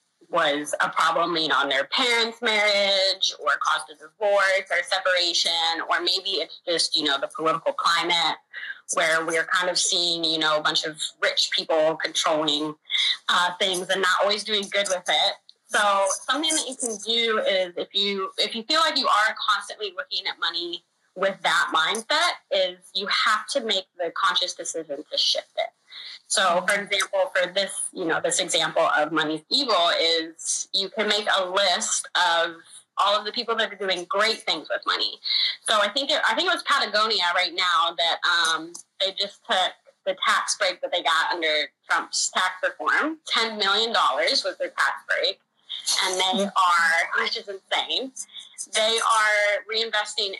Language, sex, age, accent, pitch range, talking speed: English, female, 20-39, American, 170-230 Hz, 180 wpm